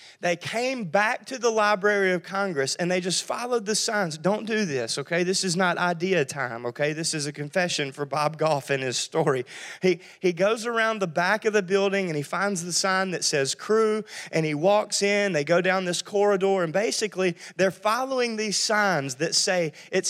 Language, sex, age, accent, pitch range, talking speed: English, male, 30-49, American, 165-220 Hz, 205 wpm